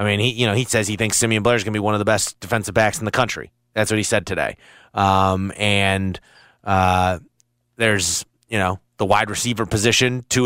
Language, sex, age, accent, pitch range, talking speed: English, male, 30-49, American, 100-120 Hz, 230 wpm